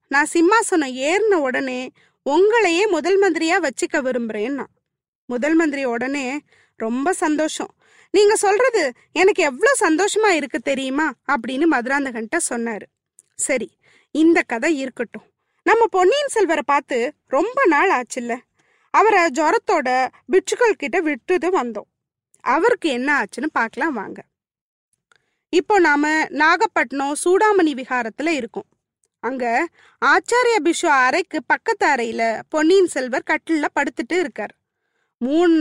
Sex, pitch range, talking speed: female, 255-360 Hz, 110 wpm